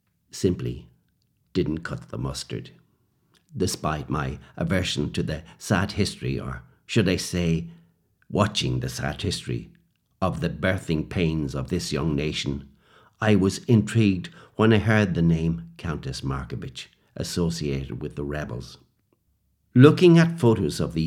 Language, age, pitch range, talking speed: English, 60-79, 80-110 Hz, 135 wpm